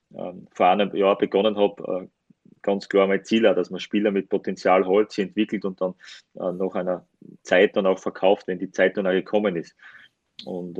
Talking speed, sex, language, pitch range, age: 185 wpm, male, German, 100-115 Hz, 30-49